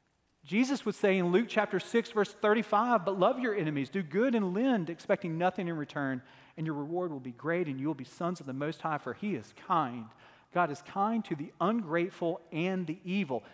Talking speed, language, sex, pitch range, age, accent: 215 wpm, English, male, 155-210 Hz, 40-59, American